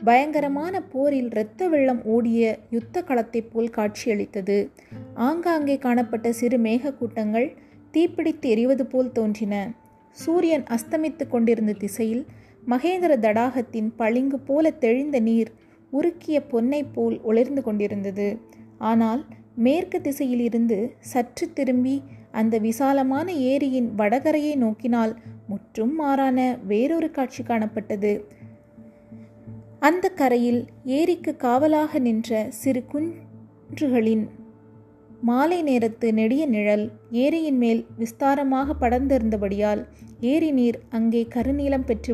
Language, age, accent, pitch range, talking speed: Tamil, 30-49, native, 220-275 Hz, 100 wpm